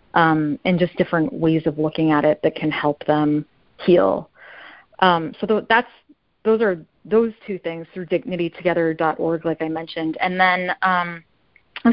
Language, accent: English, American